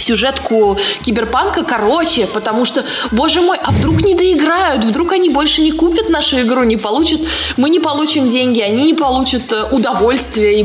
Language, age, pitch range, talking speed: Russian, 20-39, 220-290 Hz, 165 wpm